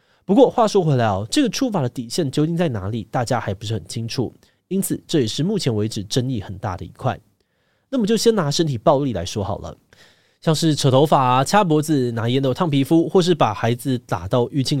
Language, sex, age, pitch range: Chinese, male, 20-39, 110-160 Hz